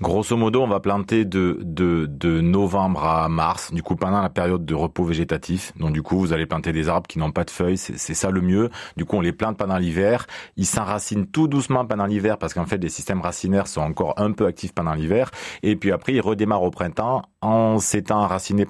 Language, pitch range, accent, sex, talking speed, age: French, 90-110 Hz, French, male, 235 wpm, 30-49